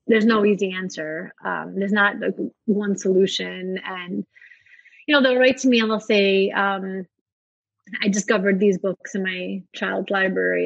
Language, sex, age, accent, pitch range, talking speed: English, female, 30-49, American, 185-220 Hz, 160 wpm